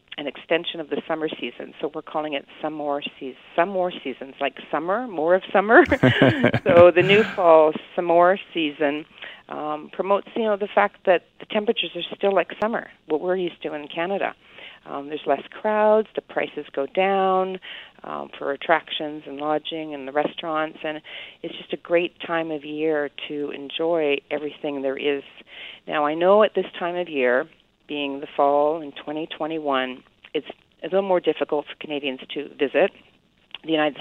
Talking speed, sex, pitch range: 175 wpm, female, 145-175 Hz